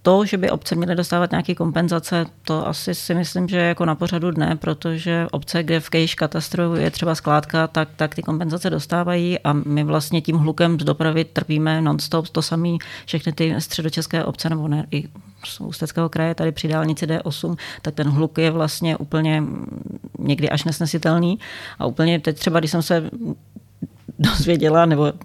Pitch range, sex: 155-175 Hz, female